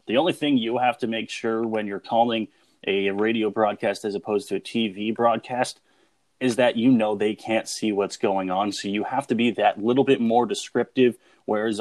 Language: English